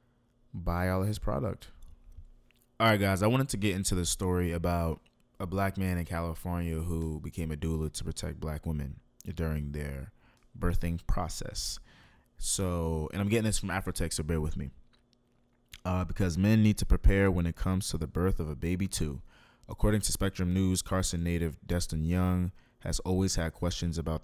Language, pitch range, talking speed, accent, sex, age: English, 80-95 Hz, 180 wpm, American, male, 20-39